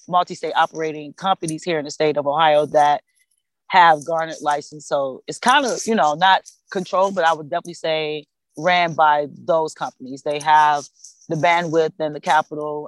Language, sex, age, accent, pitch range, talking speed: English, female, 30-49, American, 150-180 Hz, 175 wpm